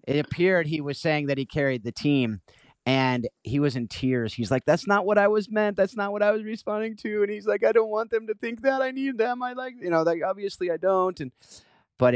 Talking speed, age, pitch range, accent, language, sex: 260 wpm, 30-49, 100-135 Hz, American, English, male